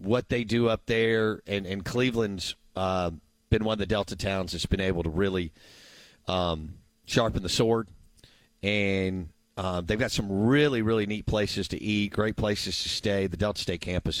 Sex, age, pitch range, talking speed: male, 40-59, 95-120 Hz, 180 wpm